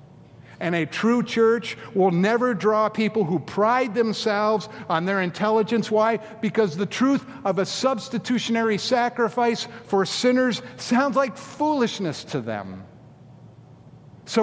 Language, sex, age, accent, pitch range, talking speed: English, male, 50-69, American, 145-220 Hz, 125 wpm